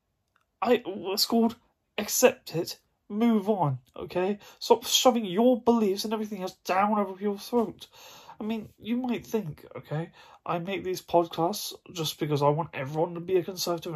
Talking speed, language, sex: 165 wpm, English, male